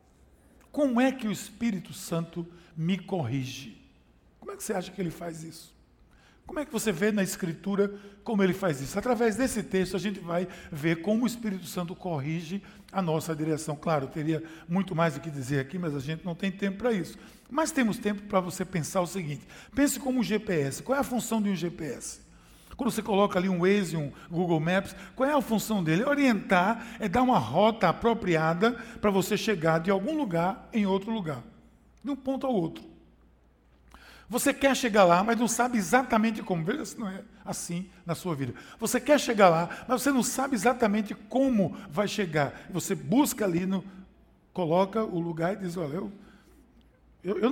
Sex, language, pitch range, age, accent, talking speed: male, Portuguese, 170-225 Hz, 60-79, Brazilian, 195 wpm